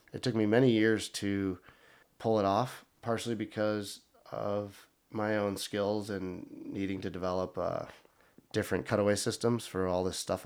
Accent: American